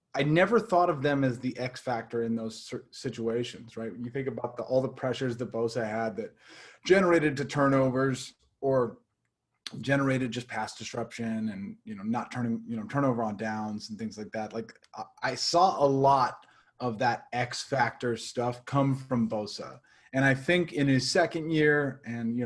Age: 20-39